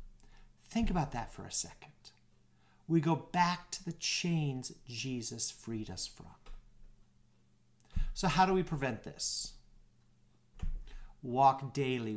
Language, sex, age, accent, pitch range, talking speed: English, male, 50-69, American, 110-170 Hz, 120 wpm